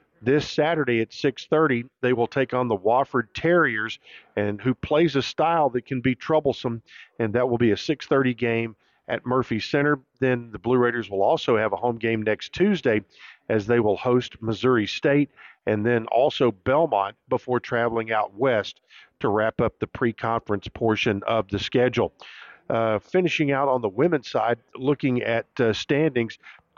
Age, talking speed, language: 50-69, 175 wpm, English